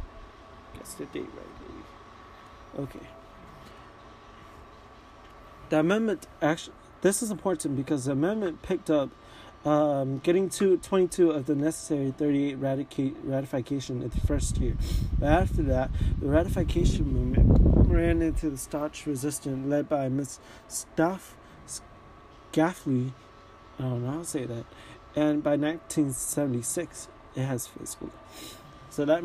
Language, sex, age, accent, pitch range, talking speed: English, male, 30-49, American, 130-155 Hz, 125 wpm